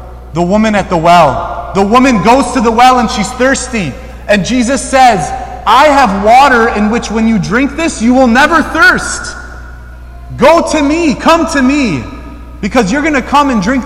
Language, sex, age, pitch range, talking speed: English, male, 30-49, 155-245 Hz, 185 wpm